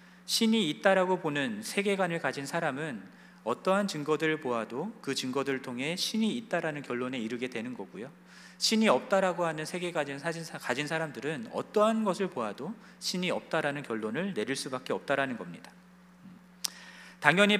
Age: 40-59